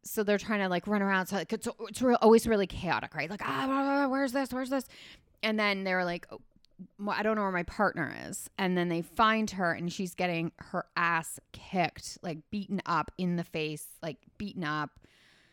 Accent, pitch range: American, 160-200 Hz